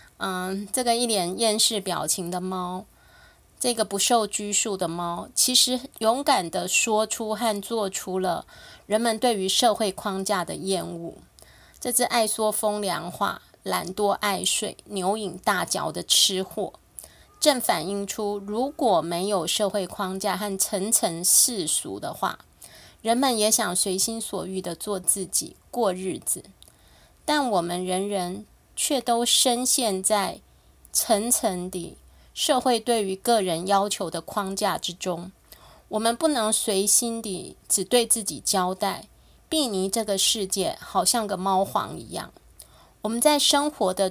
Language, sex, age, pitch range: Chinese, female, 20-39, 185-230 Hz